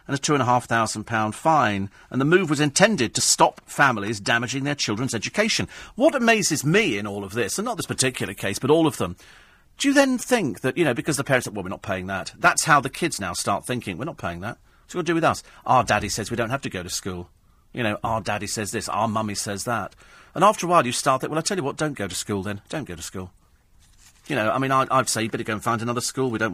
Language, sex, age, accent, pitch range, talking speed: English, male, 40-59, British, 110-165 Hz, 275 wpm